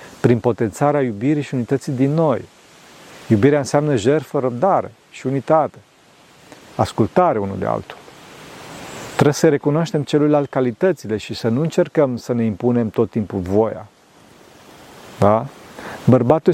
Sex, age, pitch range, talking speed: male, 40-59, 115-150 Hz, 125 wpm